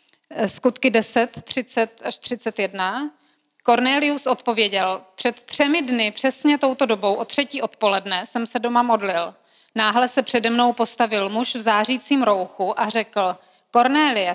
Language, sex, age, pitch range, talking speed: Czech, female, 30-49, 215-245 Hz, 135 wpm